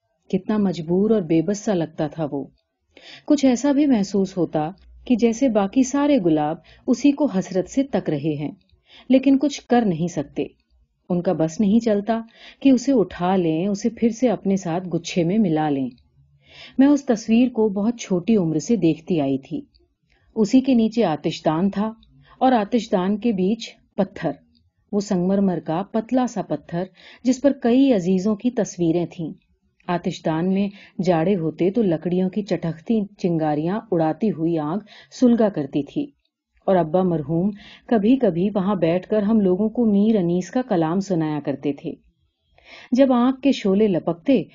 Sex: female